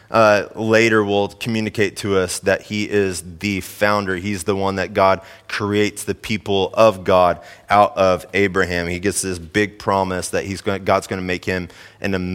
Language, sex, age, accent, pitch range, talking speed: English, male, 30-49, American, 100-125 Hz, 180 wpm